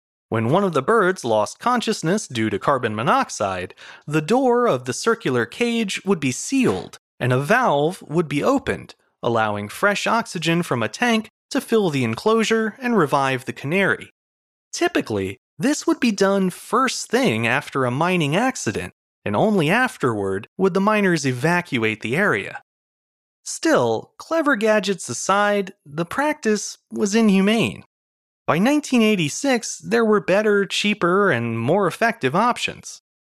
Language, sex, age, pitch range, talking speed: English, male, 30-49, 130-225 Hz, 140 wpm